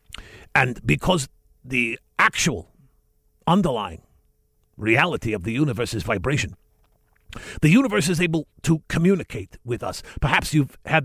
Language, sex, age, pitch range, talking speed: English, male, 50-69, 100-145 Hz, 120 wpm